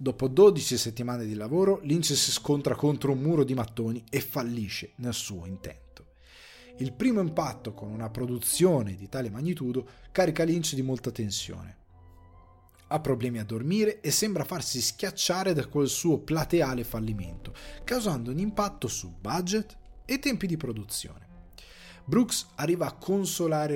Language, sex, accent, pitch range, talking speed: Italian, male, native, 115-175 Hz, 145 wpm